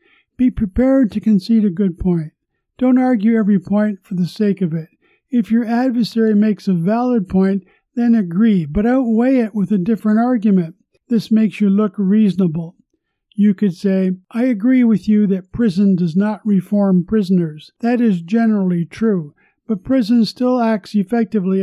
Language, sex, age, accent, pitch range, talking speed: English, male, 50-69, American, 190-230 Hz, 165 wpm